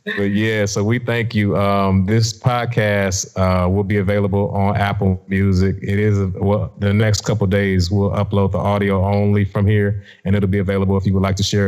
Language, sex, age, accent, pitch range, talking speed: English, male, 30-49, American, 95-110 Hz, 210 wpm